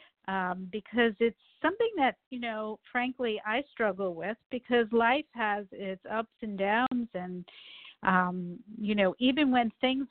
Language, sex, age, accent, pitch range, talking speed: English, female, 50-69, American, 195-245 Hz, 150 wpm